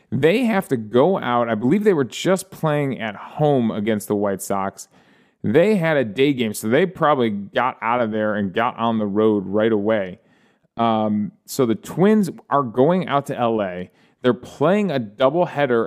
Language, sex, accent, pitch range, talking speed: English, male, American, 110-160 Hz, 185 wpm